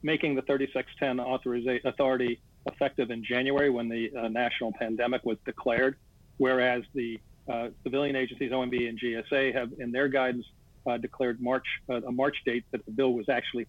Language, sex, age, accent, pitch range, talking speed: English, male, 50-69, American, 120-140 Hz, 165 wpm